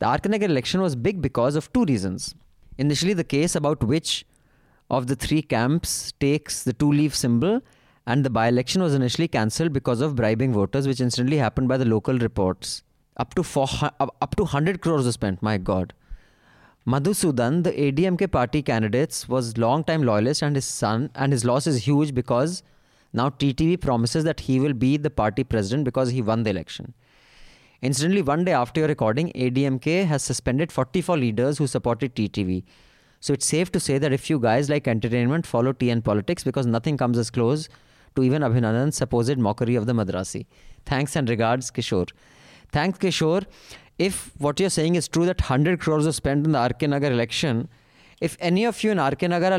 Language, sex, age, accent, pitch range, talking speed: English, male, 20-39, Indian, 120-160 Hz, 180 wpm